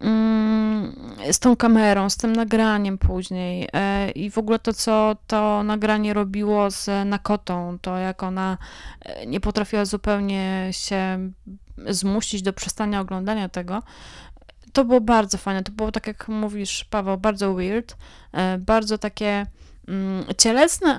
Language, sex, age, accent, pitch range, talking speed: Polish, female, 20-39, native, 190-225 Hz, 125 wpm